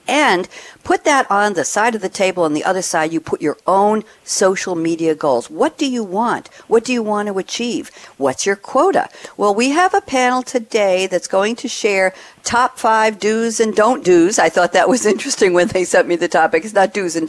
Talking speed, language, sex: 220 wpm, English, female